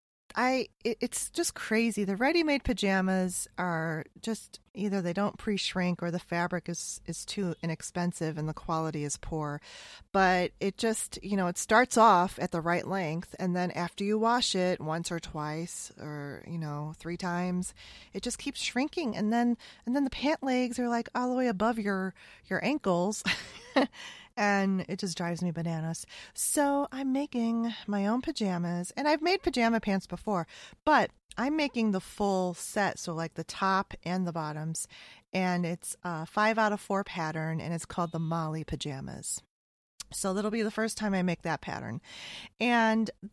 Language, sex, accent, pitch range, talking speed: English, female, American, 165-220 Hz, 175 wpm